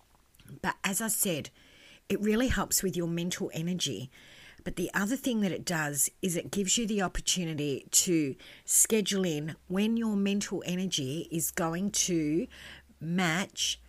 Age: 50-69